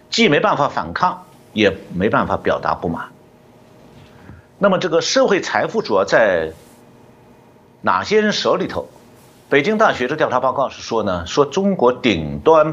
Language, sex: Chinese, male